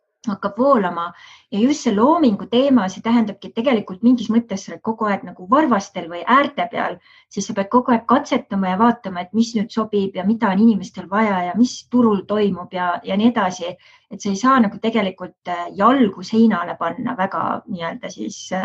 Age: 20-39